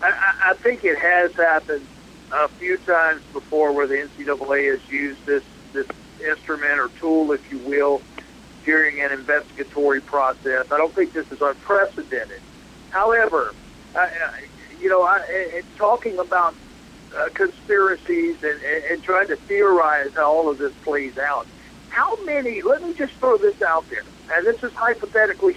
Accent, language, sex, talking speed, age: American, English, male, 155 wpm, 60-79